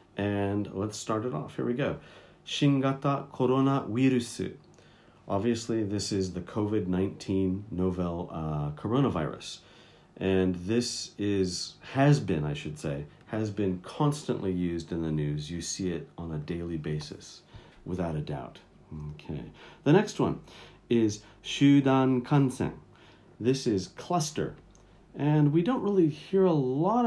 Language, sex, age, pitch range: Japanese, male, 40-59, 95-130 Hz